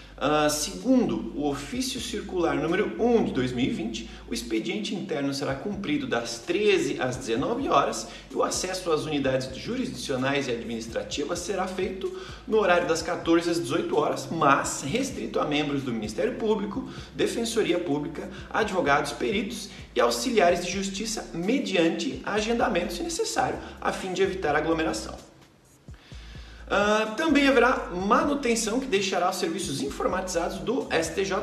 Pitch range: 145-225 Hz